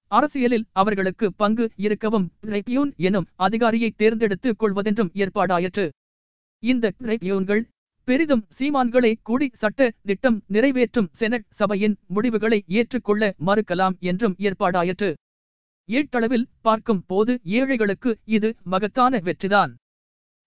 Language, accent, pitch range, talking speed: Tamil, native, 190-235 Hz, 90 wpm